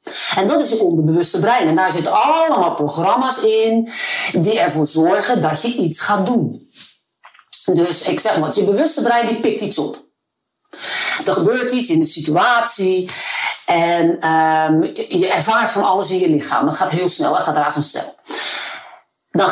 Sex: female